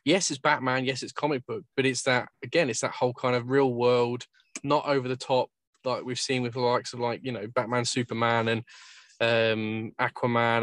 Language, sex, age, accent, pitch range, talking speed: English, male, 20-39, British, 120-145 Hz, 210 wpm